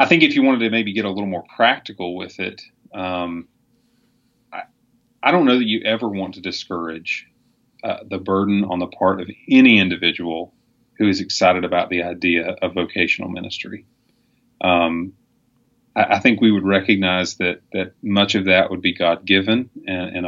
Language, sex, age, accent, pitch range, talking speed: English, male, 30-49, American, 90-110 Hz, 180 wpm